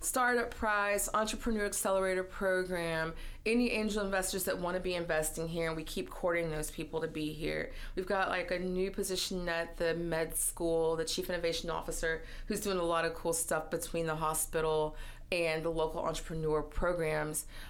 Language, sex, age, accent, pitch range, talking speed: English, female, 30-49, American, 155-185 Hz, 175 wpm